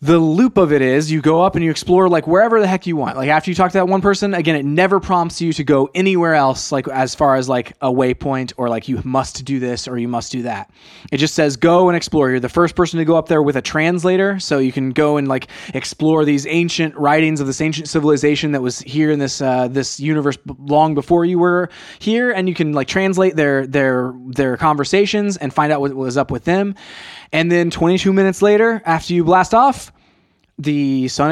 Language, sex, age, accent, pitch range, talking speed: English, male, 20-39, American, 130-170 Hz, 240 wpm